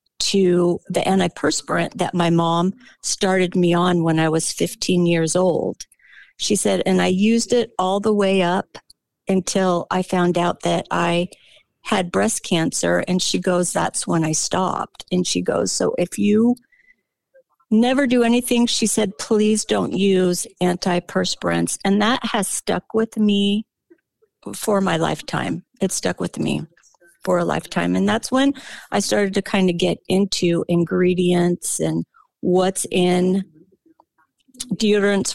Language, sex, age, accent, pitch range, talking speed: English, female, 50-69, American, 175-215 Hz, 150 wpm